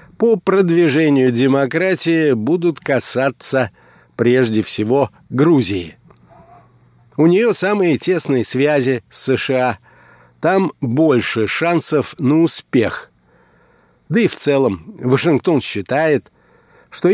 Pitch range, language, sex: 115-155 Hz, Russian, male